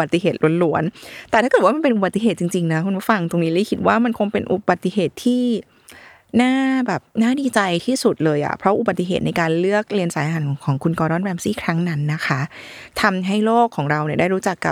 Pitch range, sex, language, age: 160-215 Hz, female, Thai, 20-39